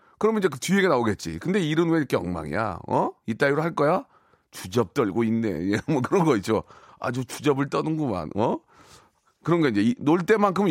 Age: 40-59